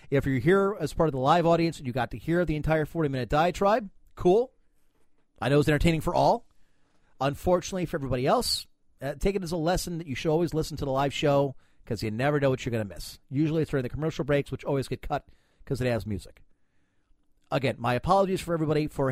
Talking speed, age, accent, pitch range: 230 wpm, 40-59, American, 120-155 Hz